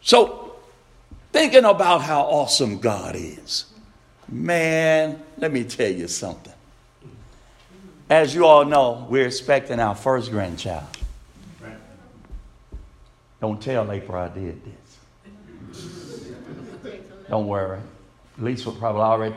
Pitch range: 105-155 Hz